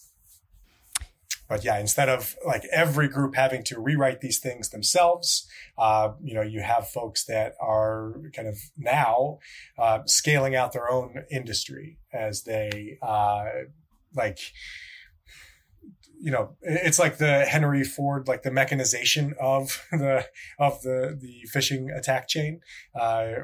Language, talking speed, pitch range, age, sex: English, 135 wpm, 110-140 Hz, 20-39, male